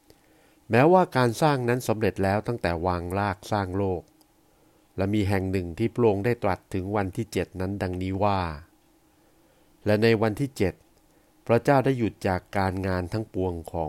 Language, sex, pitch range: Thai, male, 95-120 Hz